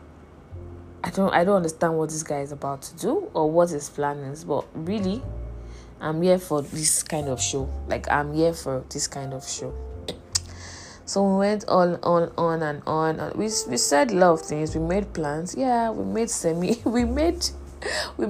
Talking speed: 185 wpm